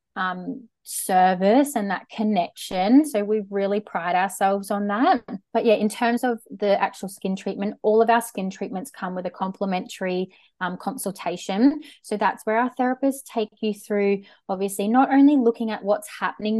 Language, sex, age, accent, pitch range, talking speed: English, female, 20-39, Australian, 195-235 Hz, 170 wpm